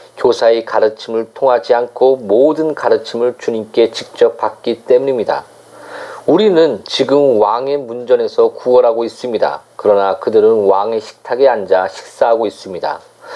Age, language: 40-59, Korean